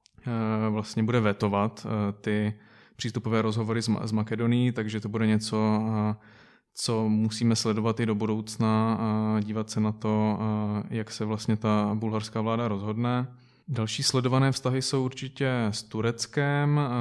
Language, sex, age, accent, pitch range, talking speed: Czech, male, 20-39, native, 110-115 Hz, 130 wpm